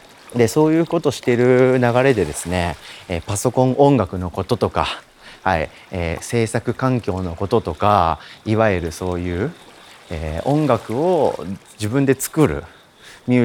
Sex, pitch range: male, 95-140 Hz